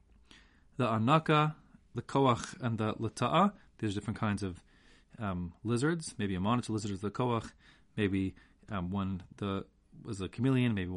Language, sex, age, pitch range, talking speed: English, male, 30-49, 100-125 Hz, 155 wpm